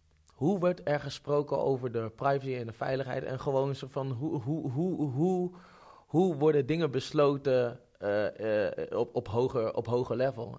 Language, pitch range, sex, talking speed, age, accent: Dutch, 125-160 Hz, male, 170 wpm, 20-39, Dutch